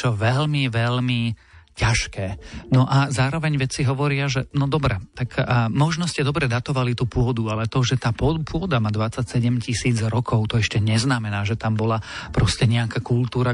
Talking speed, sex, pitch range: 170 wpm, male, 115-125 Hz